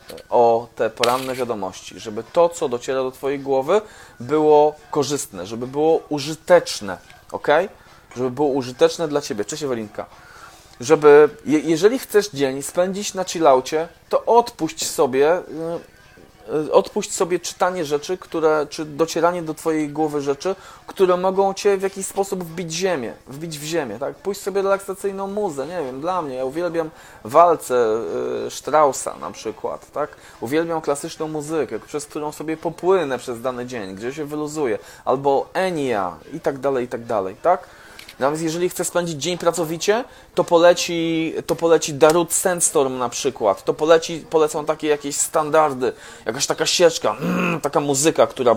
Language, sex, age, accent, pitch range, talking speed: Polish, male, 20-39, native, 140-180 Hz, 150 wpm